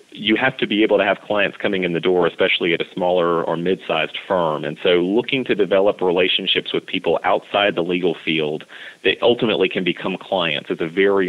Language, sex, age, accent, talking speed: English, male, 30-49, American, 205 wpm